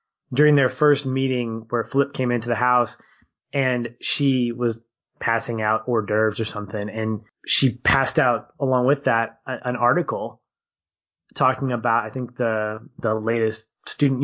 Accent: American